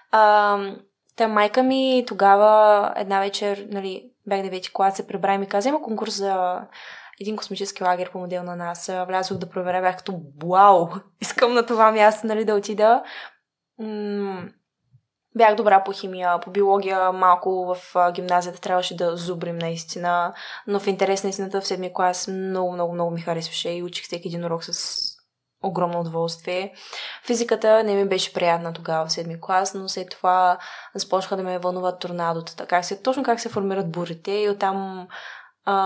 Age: 20-39